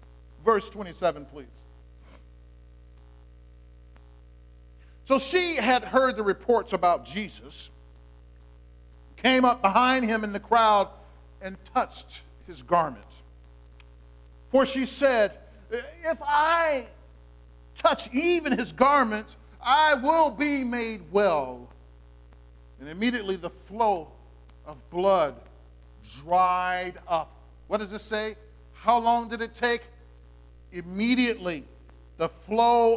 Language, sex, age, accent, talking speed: English, male, 50-69, American, 100 wpm